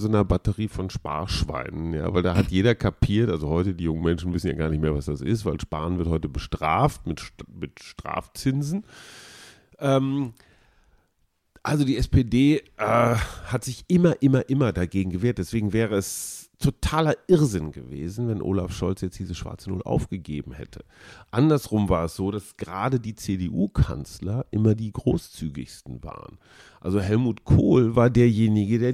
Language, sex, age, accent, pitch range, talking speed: German, male, 40-59, German, 90-120 Hz, 160 wpm